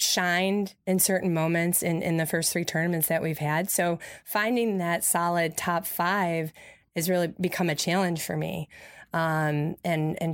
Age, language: 20-39, English